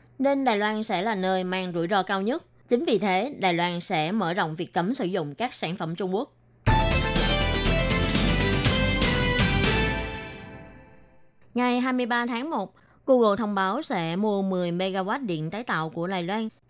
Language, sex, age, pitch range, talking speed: Vietnamese, female, 20-39, 175-220 Hz, 160 wpm